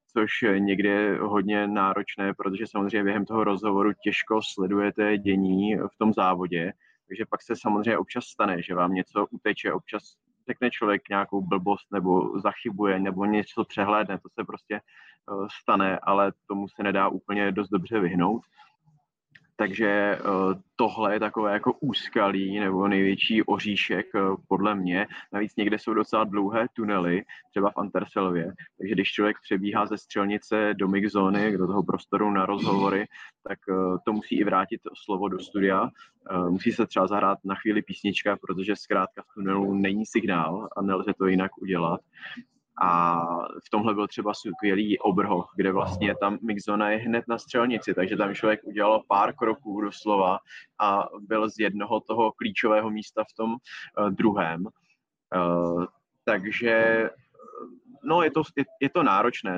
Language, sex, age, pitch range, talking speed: Czech, male, 20-39, 95-110 Hz, 150 wpm